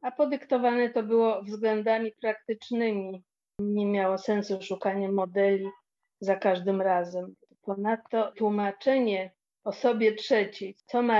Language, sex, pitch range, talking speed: Polish, female, 195-230 Hz, 115 wpm